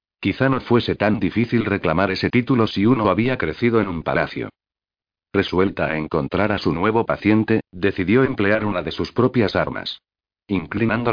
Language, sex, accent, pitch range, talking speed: Spanish, male, Spanish, 95-110 Hz, 160 wpm